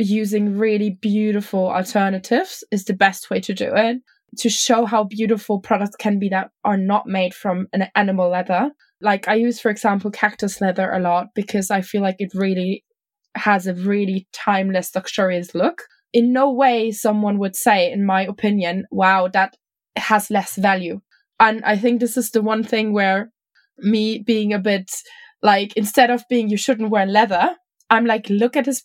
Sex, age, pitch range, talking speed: female, 20-39, 200-235 Hz, 180 wpm